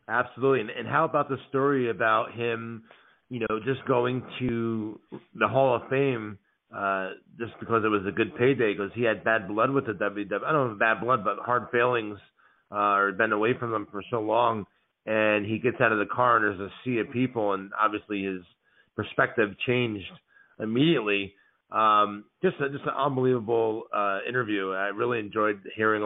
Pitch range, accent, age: 105-125 Hz, American, 40-59